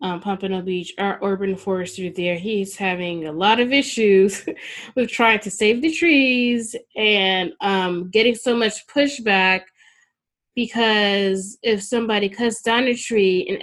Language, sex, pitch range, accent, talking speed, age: English, female, 180-215 Hz, American, 145 wpm, 10-29